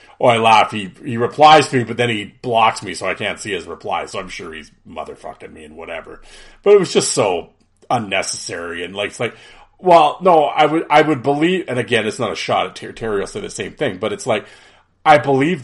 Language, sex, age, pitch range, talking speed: English, male, 40-59, 105-140 Hz, 240 wpm